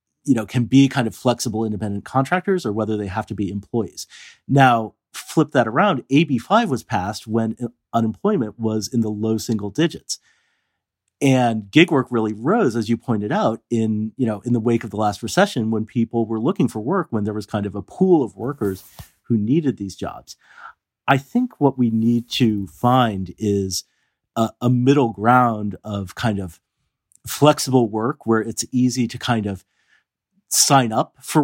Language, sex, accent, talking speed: English, male, American, 180 wpm